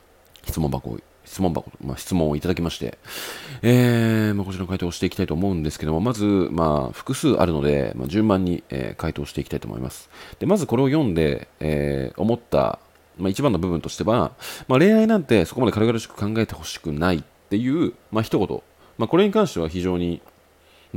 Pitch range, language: 75-105 Hz, Japanese